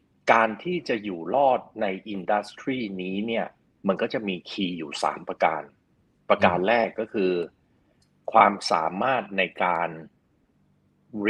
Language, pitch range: Thai, 95-115 Hz